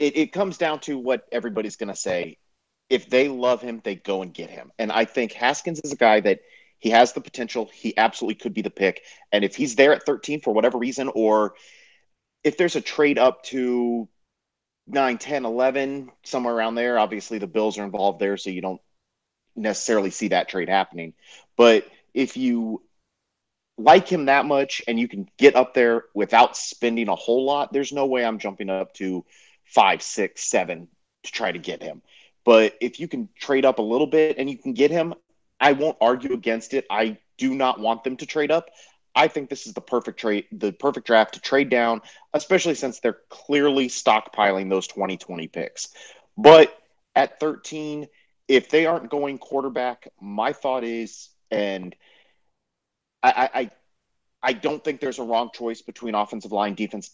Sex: male